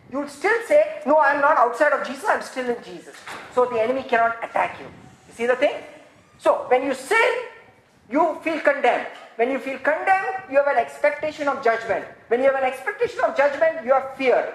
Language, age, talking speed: English, 50-69, 220 wpm